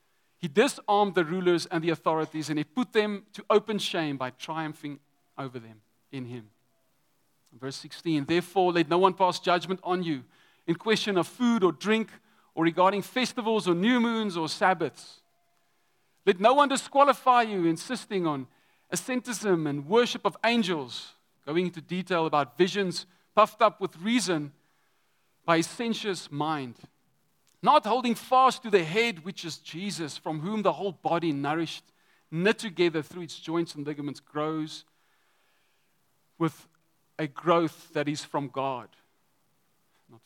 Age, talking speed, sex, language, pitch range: 40-59, 150 wpm, male, English, 150-210 Hz